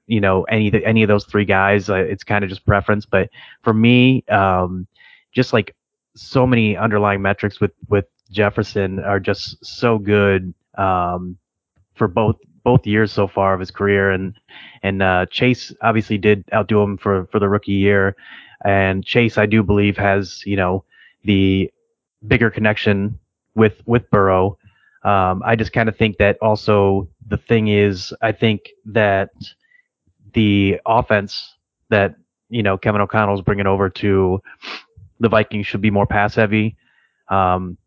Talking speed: 160 wpm